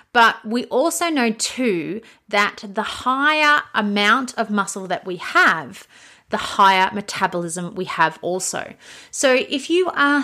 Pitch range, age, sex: 190-245 Hz, 30-49, female